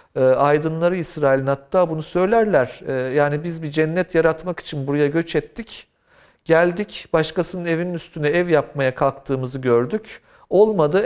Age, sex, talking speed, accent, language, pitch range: 50-69, male, 125 wpm, native, Turkish, 120-175 Hz